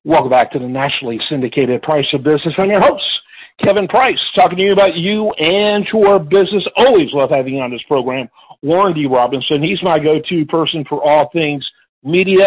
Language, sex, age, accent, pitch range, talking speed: English, male, 50-69, American, 150-205 Hz, 190 wpm